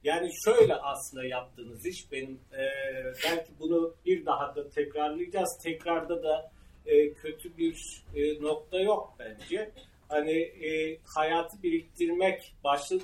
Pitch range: 140-180 Hz